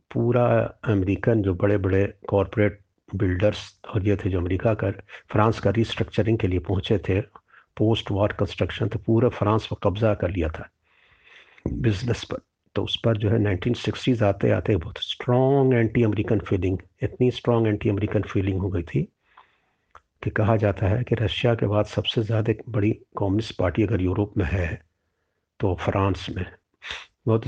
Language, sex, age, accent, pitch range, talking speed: Hindi, male, 50-69, native, 95-115 Hz, 160 wpm